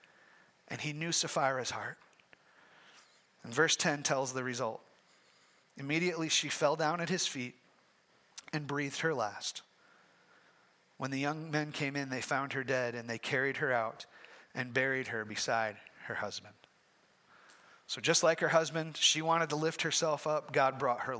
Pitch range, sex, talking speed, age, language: 130-180 Hz, male, 160 wpm, 30-49, English